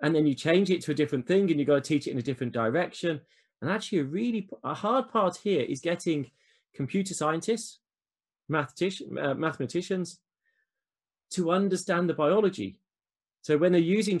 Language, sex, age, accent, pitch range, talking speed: English, male, 20-39, British, 135-180 Hz, 175 wpm